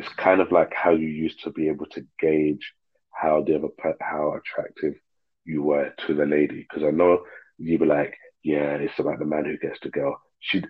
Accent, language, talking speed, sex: British, English, 220 wpm, male